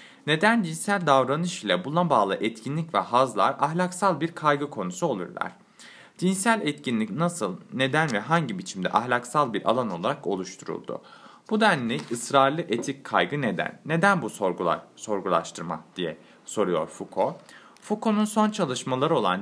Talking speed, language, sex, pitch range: 135 wpm, Turkish, male, 120-180 Hz